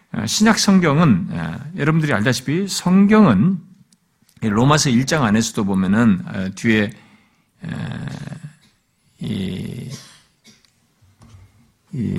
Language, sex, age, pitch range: Korean, male, 50-69, 125-190 Hz